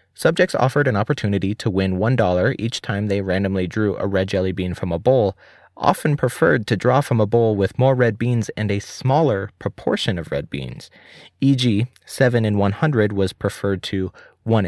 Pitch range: 95-135 Hz